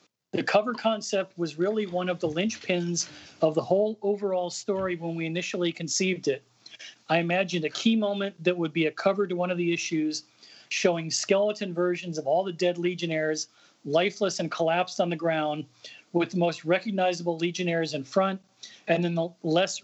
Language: English